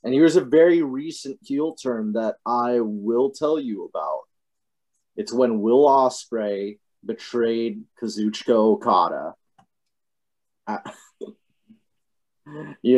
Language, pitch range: English, 135-220 Hz